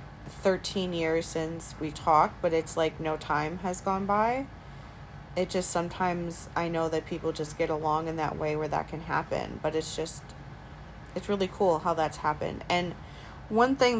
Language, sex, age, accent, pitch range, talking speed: English, female, 20-39, American, 155-175 Hz, 180 wpm